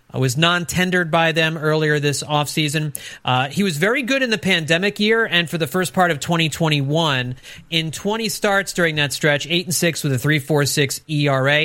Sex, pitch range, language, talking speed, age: male, 145-190 Hz, English, 215 wpm, 40-59